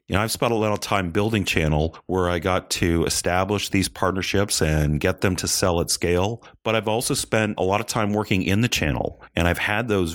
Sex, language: male, English